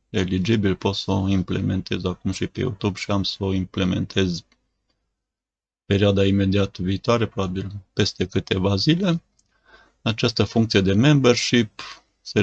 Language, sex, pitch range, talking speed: Romanian, male, 95-110 Hz, 125 wpm